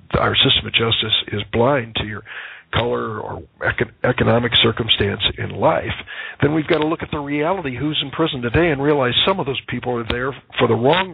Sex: male